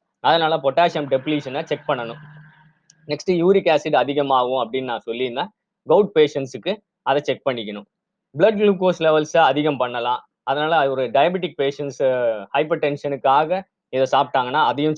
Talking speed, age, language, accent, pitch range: 125 wpm, 20-39, Tamil, native, 135-170 Hz